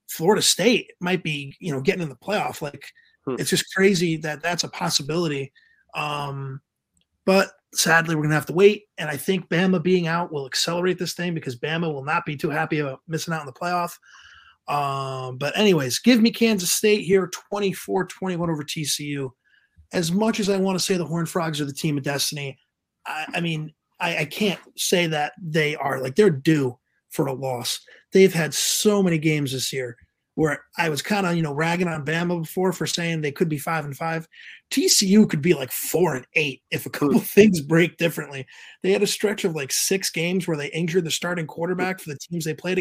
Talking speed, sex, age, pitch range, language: 210 wpm, male, 30-49, 145-185 Hz, English